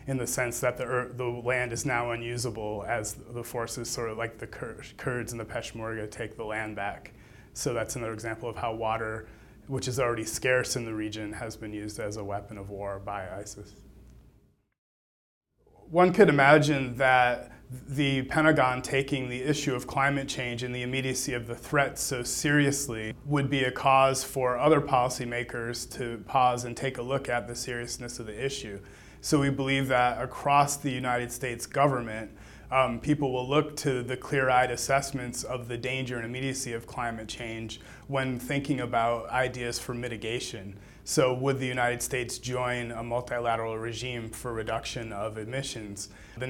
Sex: male